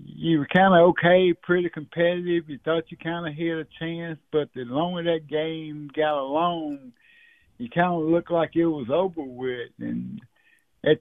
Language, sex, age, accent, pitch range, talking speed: English, male, 60-79, American, 150-190 Hz, 180 wpm